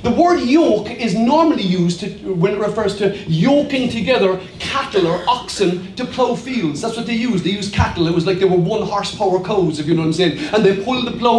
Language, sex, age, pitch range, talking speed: English, male, 30-49, 175-235 Hz, 235 wpm